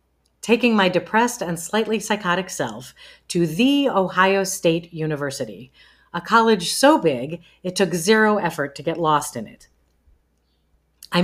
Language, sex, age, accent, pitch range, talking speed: English, female, 40-59, American, 135-205 Hz, 140 wpm